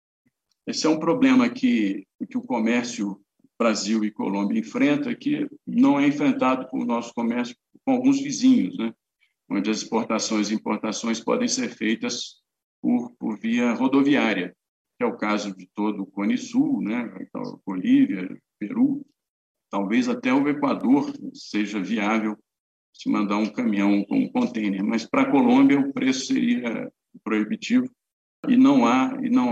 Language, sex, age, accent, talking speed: Portuguese, male, 50-69, Brazilian, 150 wpm